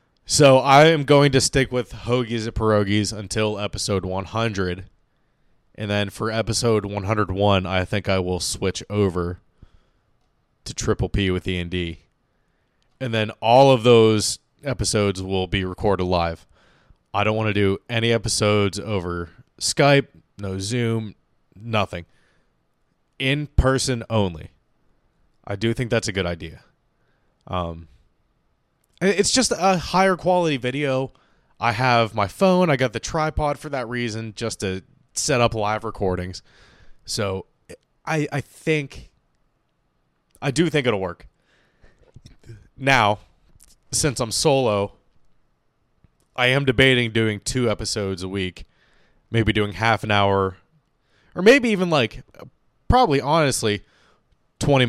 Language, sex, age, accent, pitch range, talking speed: English, male, 20-39, American, 95-130 Hz, 130 wpm